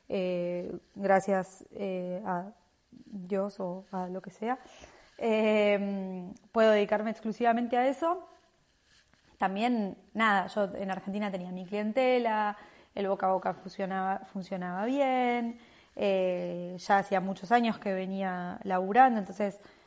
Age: 20-39